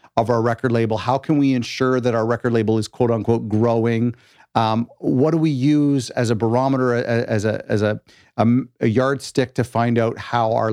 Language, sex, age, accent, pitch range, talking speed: English, male, 50-69, American, 115-140 Hz, 200 wpm